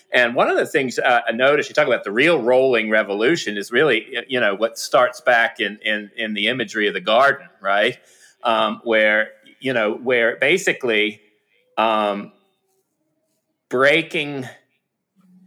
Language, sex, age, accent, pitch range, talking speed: English, male, 30-49, American, 110-140 Hz, 150 wpm